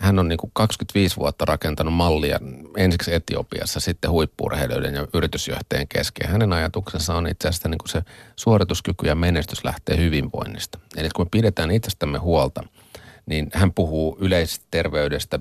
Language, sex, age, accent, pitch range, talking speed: Finnish, male, 30-49, native, 75-95 Hz, 145 wpm